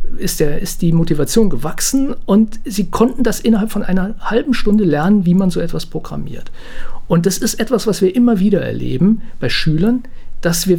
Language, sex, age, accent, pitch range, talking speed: German, male, 50-69, German, 160-220 Hz, 185 wpm